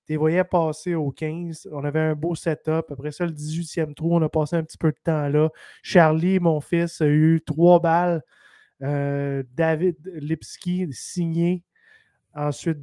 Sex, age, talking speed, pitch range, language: male, 20-39, 170 wpm, 150-170 Hz, French